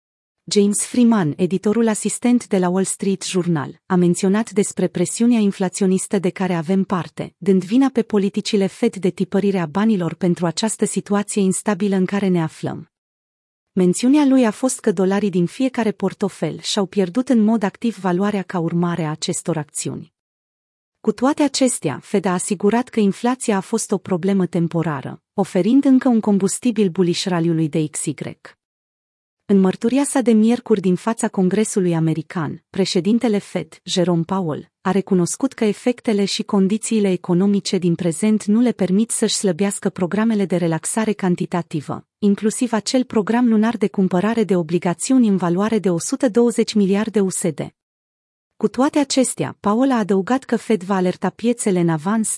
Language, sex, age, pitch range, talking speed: Romanian, female, 30-49, 180-220 Hz, 150 wpm